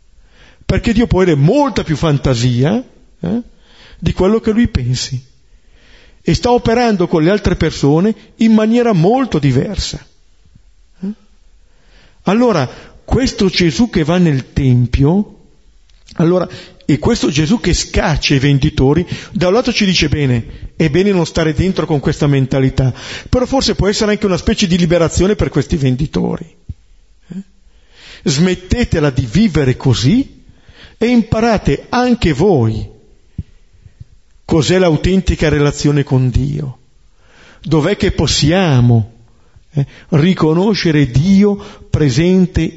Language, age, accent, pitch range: Italian, 50-69, native, 125-195 Hz